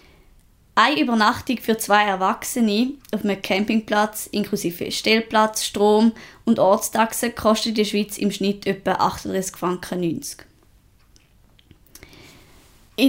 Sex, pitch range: female, 200-230 Hz